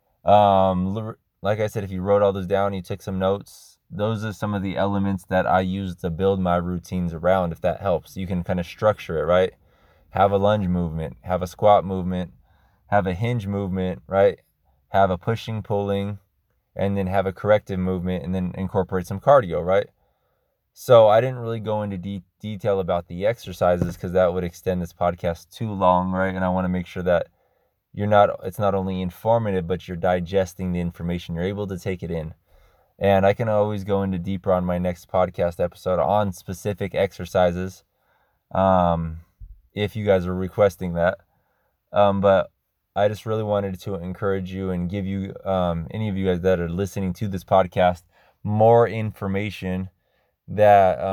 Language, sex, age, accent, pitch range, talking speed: English, male, 20-39, American, 90-100 Hz, 185 wpm